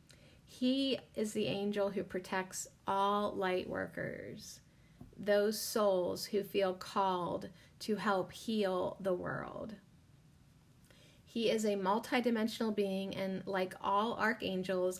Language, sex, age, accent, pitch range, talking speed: English, female, 30-49, American, 185-210 Hz, 110 wpm